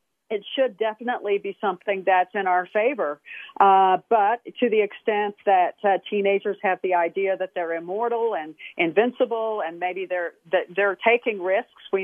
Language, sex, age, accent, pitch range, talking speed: English, female, 50-69, American, 180-210 Hz, 165 wpm